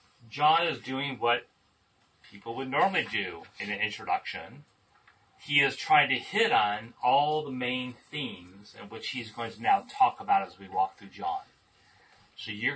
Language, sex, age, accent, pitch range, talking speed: English, male, 30-49, American, 120-185 Hz, 170 wpm